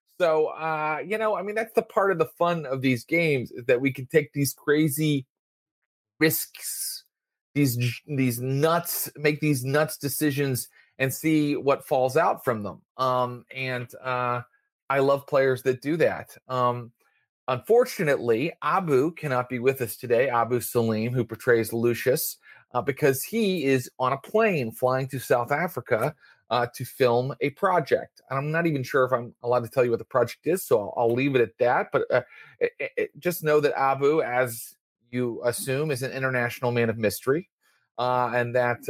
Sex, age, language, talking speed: male, 30-49, English, 175 wpm